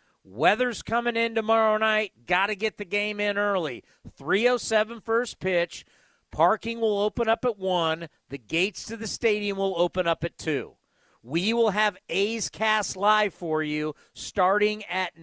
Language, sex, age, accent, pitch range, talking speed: English, male, 40-59, American, 165-220 Hz, 160 wpm